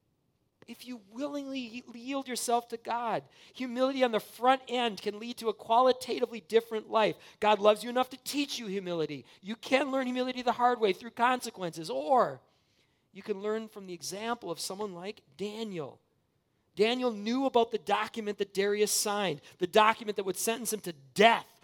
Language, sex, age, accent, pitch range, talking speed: English, male, 40-59, American, 160-225 Hz, 175 wpm